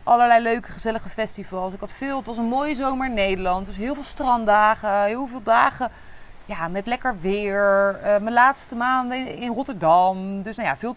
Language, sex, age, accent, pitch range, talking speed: Dutch, female, 30-49, Dutch, 180-240 Hz, 190 wpm